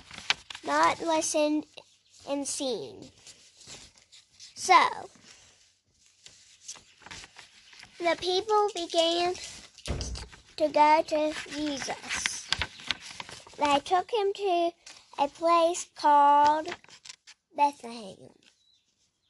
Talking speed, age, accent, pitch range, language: 60 wpm, 10-29, American, 295-390 Hz, English